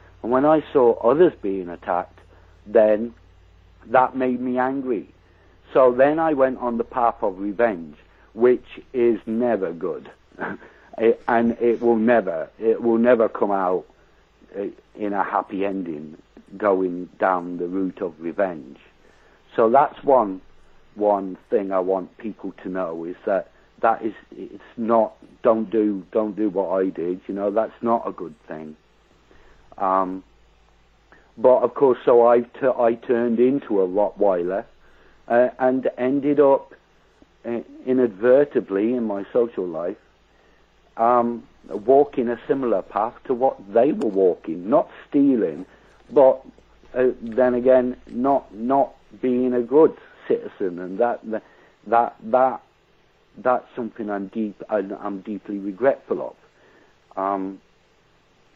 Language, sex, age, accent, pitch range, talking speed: English, male, 60-79, British, 95-125 Hz, 135 wpm